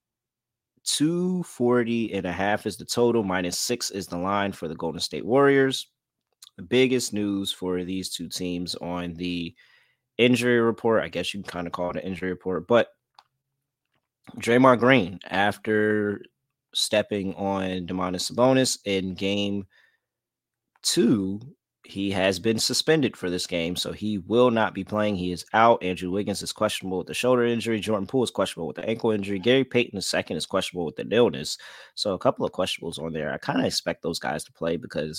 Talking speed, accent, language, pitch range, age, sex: 185 wpm, American, English, 90-120 Hz, 20-39, male